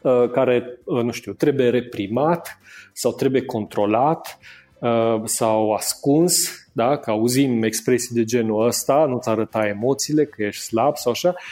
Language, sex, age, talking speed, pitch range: Romanian, male, 40-59, 125 wpm, 120-170 Hz